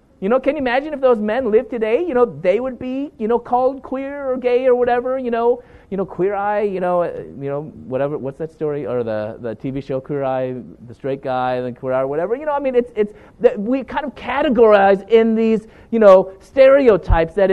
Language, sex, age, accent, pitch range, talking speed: English, male, 30-49, American, 140-230 Hz, 240 wpm